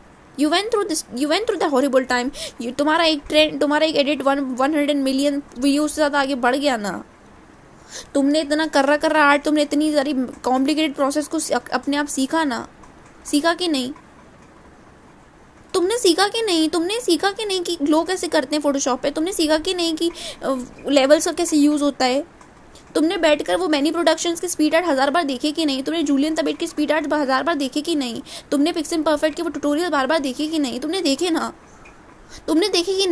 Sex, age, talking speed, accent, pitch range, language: female, 20-39, 120 wpm, Indian, 280-335 Hz, English